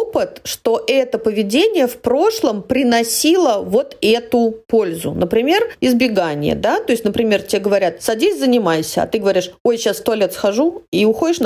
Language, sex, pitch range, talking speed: Russian, female, 210-290 Hz, 155 wpm